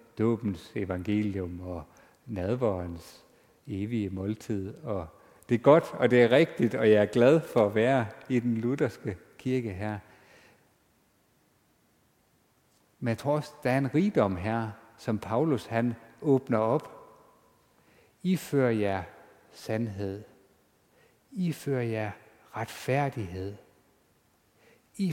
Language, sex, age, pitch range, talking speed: Danish, male, 60-79, 105-145 Hz, 115 wpm